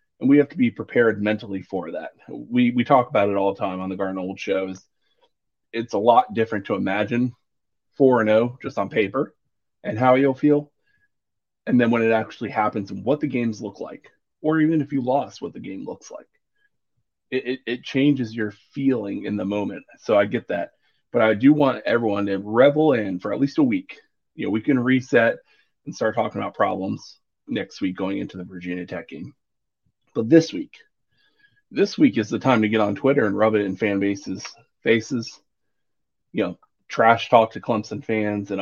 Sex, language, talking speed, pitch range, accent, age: male, English, 200 wpm, 100-135 Hz, American, 30-49